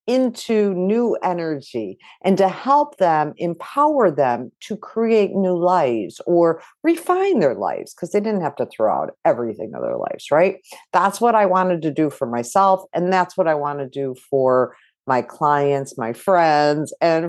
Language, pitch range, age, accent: English, 145-235 Hz, 50-69, American